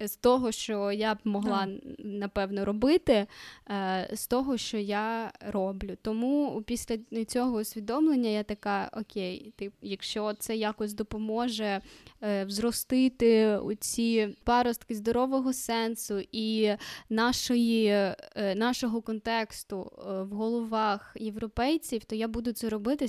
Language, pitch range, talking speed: Ukrainian, 210-250 Hz, 105 wpm